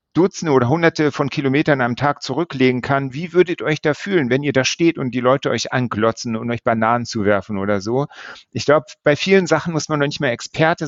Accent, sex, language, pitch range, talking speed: German, male, German, 130-155 Hz, 225 wpm